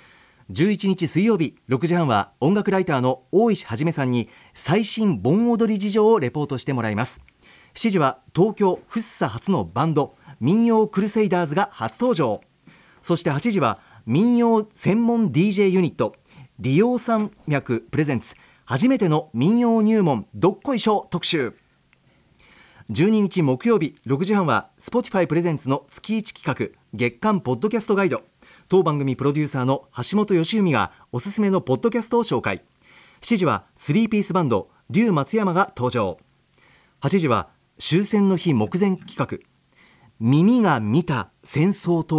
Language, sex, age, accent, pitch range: Japanese, male, 40-59, native, 135-210 Hz